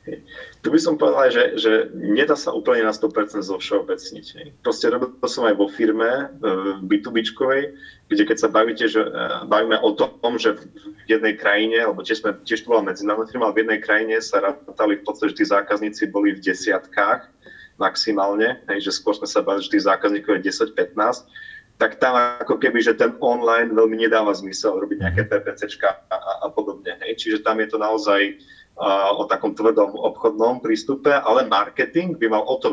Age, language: 30-49, Slovak